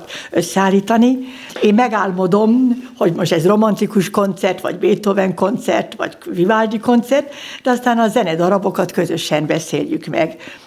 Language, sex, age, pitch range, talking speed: Hungarian, female, 60-79, 175-235 Hz, 125 wpm